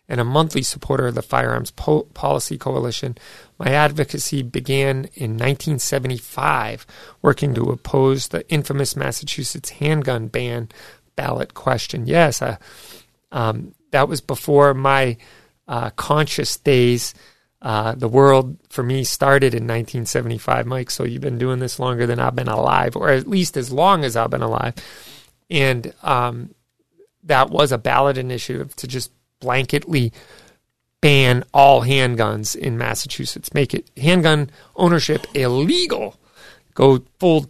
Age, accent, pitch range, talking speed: 40-59, American, 120-145 Hz, 135 wpm